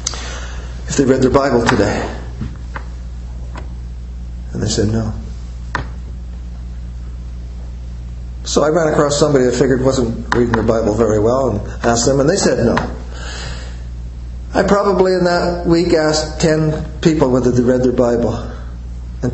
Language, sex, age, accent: English, male, 50-69, American